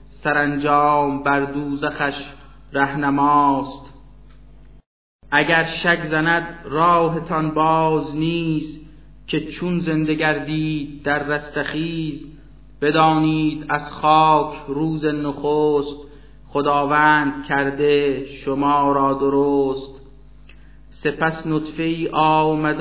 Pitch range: 145-155 Hz